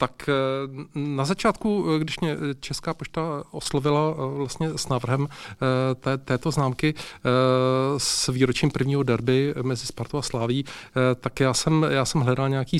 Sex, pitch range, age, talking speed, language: male, 125-145 Hz, 40-59, 135 wpm, Czech